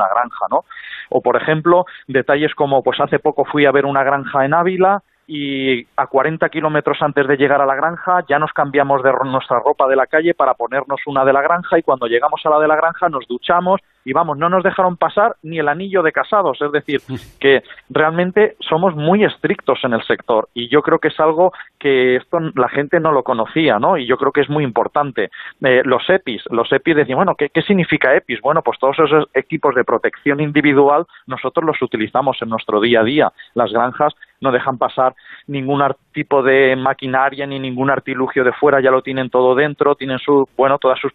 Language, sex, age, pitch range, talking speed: Spanish, male, 30-49, 130-155 Hz, 210 wpm